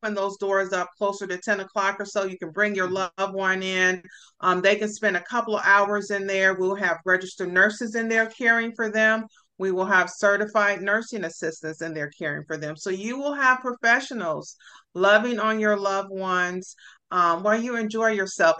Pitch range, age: 175-210 Hz, 40-59